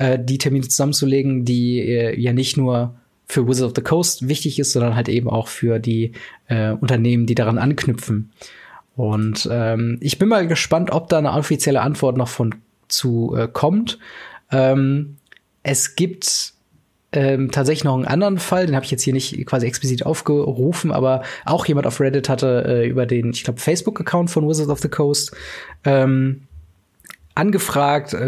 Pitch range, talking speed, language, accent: 120-145 Hz, 170 wpm, German, German